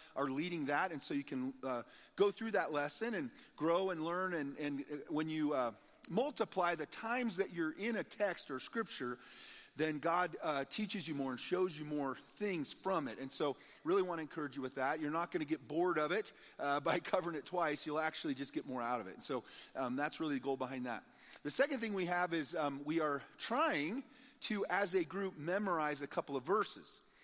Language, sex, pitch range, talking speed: English, male, 145-195 Hz, 225 wpm